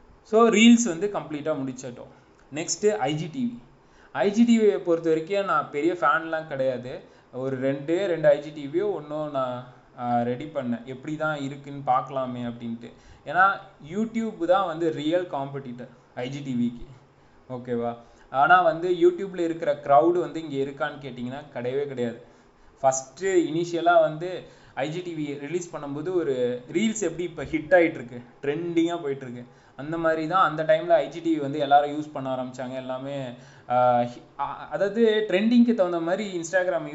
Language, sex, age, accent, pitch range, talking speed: English, male, 20-39, Indian, 130-175 Hz, 75 wpm